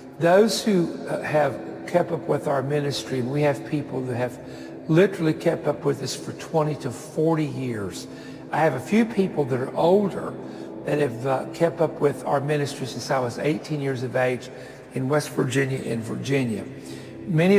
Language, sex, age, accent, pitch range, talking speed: English, male, 60-79, American, 130-160 Hz, 175 wpm